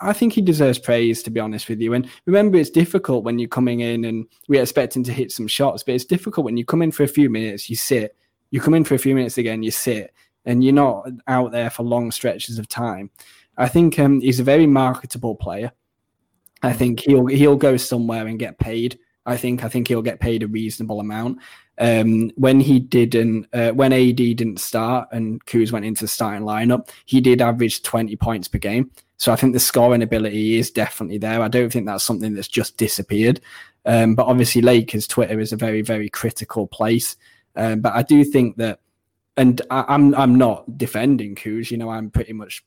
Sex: male